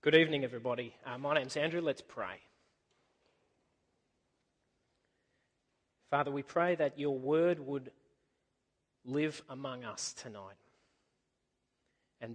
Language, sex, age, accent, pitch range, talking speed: English, male, 30-49, Australian, 150-205 Hz, 100 wpm